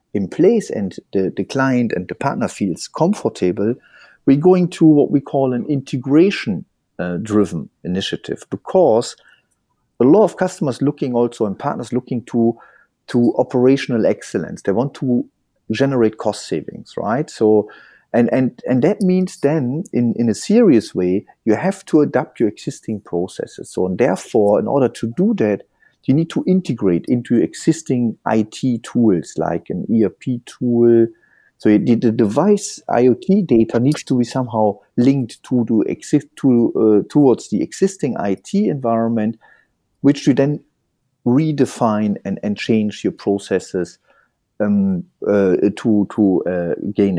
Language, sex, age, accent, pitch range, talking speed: English, male, 50-69, German, 110-150 Hz, 150 wpm